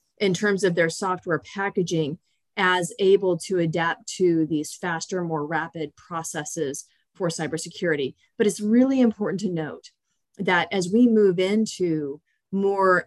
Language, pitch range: English, 170-205 Hz